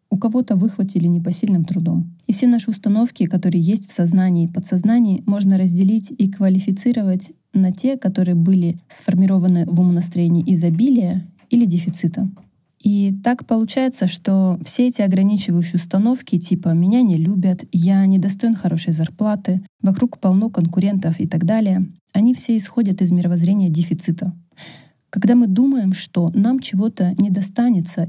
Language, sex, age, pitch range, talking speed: Russian, female, 20-39, 175-210 Hz, 140 wpm